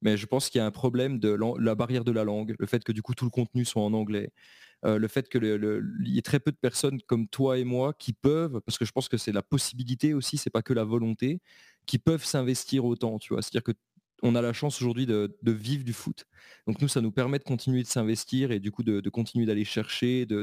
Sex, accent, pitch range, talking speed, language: male, French, 110-130 Hz, 265 wpm, French